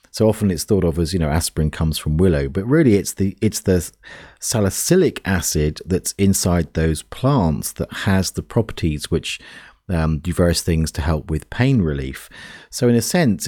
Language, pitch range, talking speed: English, 80-100 Hz, 185 wpm